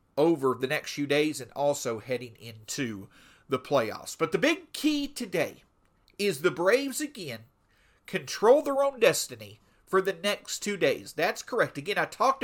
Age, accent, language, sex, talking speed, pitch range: 40-59, American, English, male, 165 wpm, 160-205 Hz